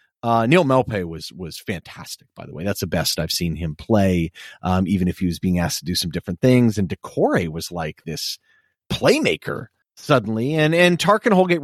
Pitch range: 115-170 Hz